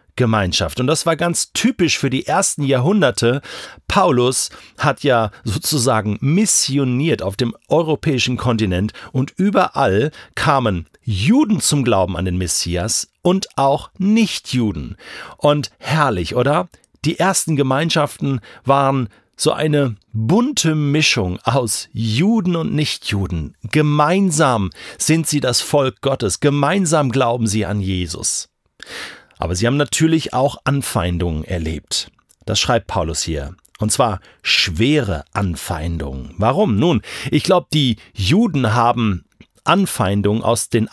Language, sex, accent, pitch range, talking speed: German, male, German, 105-150 Hz, 120 wpm